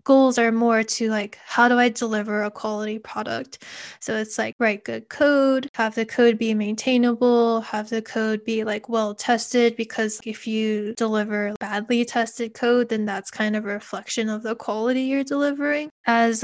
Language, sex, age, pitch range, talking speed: English, female, 10-29, 215-245 Hz, 180 wpm